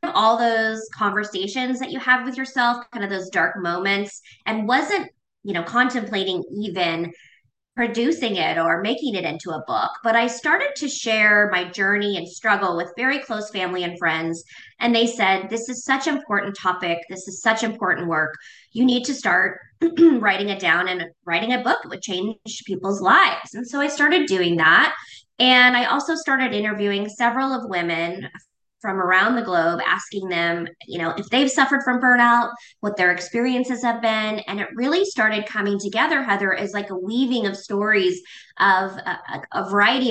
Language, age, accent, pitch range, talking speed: English, 20-39, American, 190-250 Hz, 180 wpm